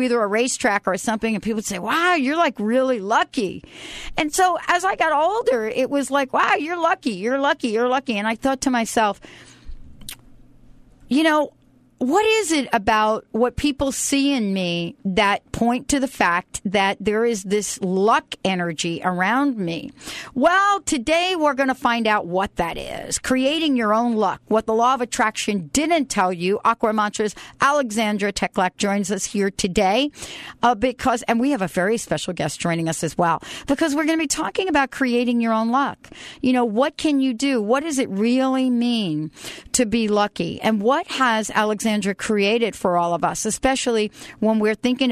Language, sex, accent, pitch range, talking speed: English, female, American, 200-270 Hz, 190 wpm